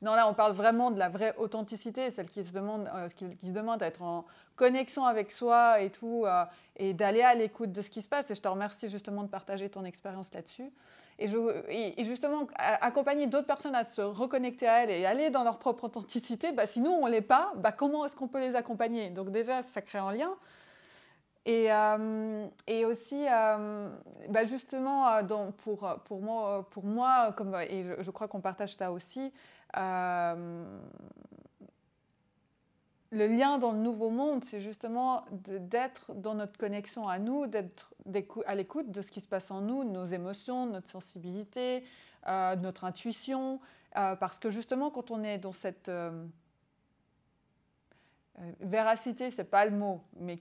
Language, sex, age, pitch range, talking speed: French, female, 20-39, 195-245 Hz, 180 wpm